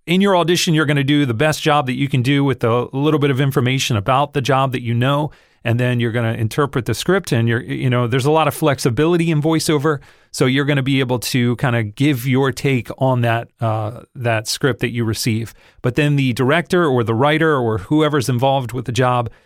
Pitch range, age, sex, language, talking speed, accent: 120-145 Hz, 40-59, male, English, 240 wpm, American